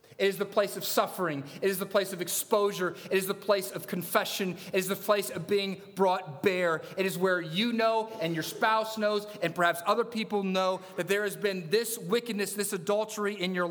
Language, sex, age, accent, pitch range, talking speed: English, male, 30-49, American, 140-180 Hz, 220 wpm